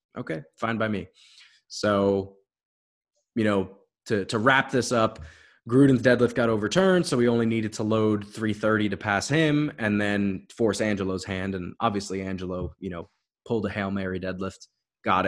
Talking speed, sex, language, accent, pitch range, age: 170 wpm, male, English, American, 100-125 Hz, 20-39